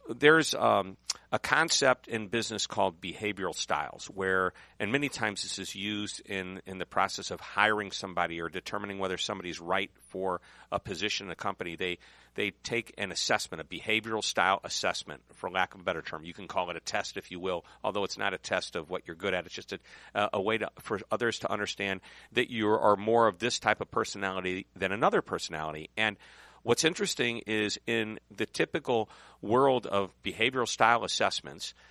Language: English